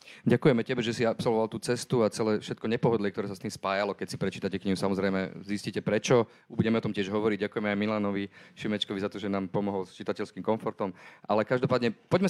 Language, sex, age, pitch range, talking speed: Slovak, male, 30-49, 100-115 Hz, 210 wpm